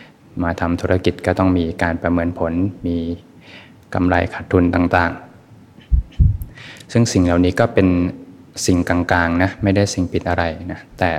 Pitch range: 85-95 Hz